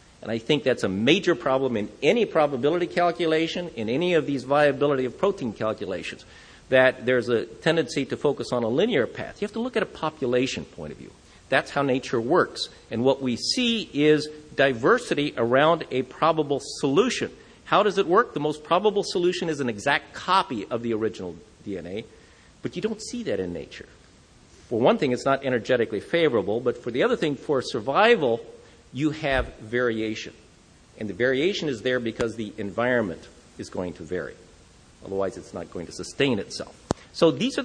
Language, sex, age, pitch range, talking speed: English, male, 50-69, 120-170 Hz, 185 wpm